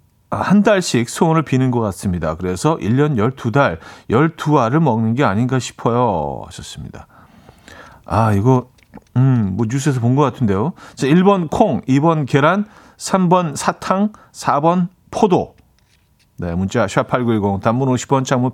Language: Korean